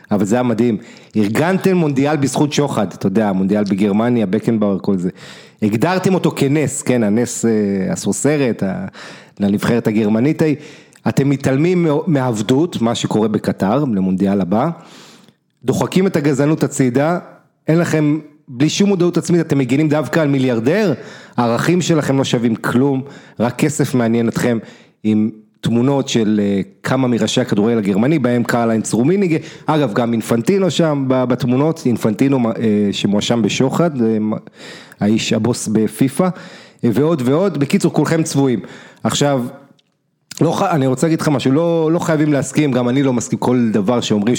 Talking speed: 130 wpm